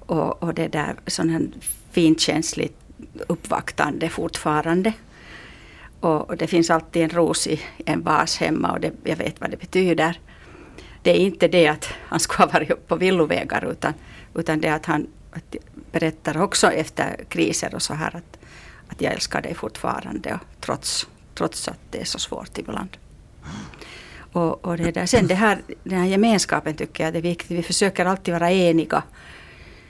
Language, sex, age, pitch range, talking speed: Finnish, female, 60-79, 160-175 Hz, 170 wpm